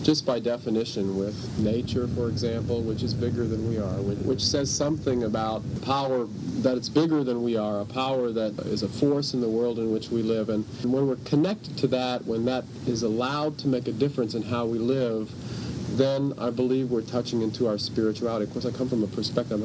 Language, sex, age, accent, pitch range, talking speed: English, male, 50-69, American, 110-130 Hz, 215 wpm